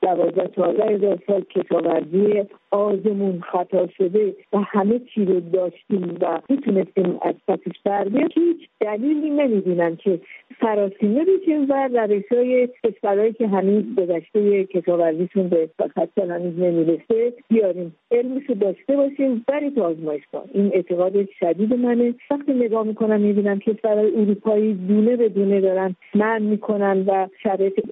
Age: 50-69